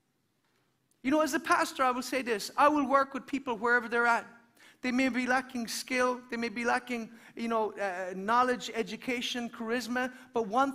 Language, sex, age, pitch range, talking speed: English, male, 40-59, 250-310 Hz, 190 wpm